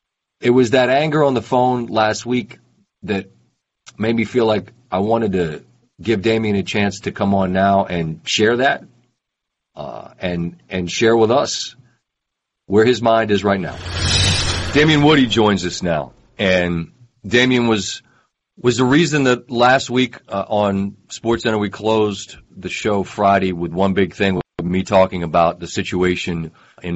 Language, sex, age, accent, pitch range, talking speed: English, male, 40-59, American, 90-115 Hz, 165 wpm